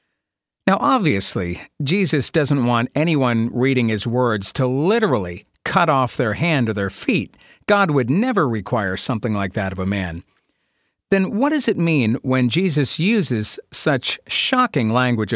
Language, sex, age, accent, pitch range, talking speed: English, male, 50-69, American, 115-155 Hz, 150 wpm